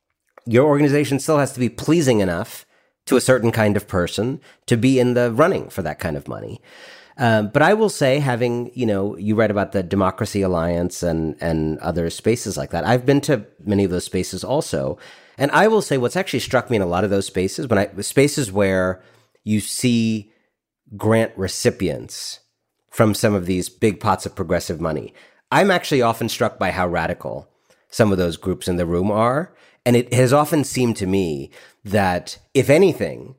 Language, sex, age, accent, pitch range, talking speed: English, male, 40-59, American, 95-130 Hz, 190 wpm